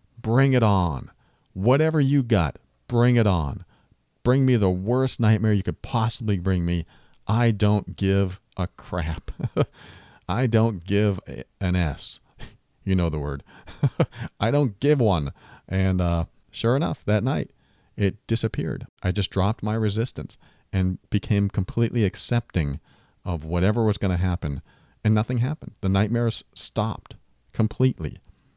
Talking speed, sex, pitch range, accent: 140 wpm, male, 90-120 Hz, American